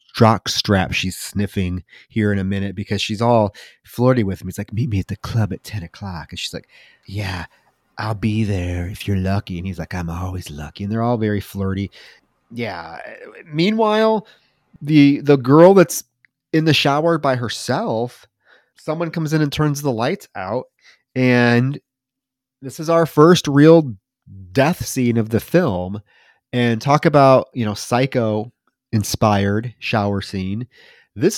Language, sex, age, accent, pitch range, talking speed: English, male, 30-49, American, 105-145 Hz, 160 wpm